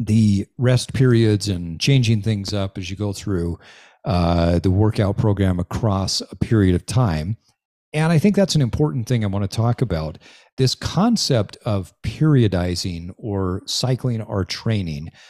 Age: 40-59